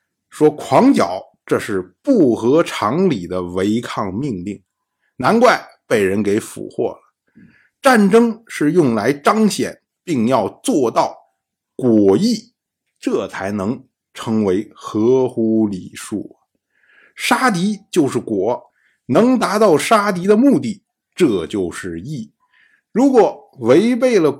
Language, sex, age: Chinese, male, 50-69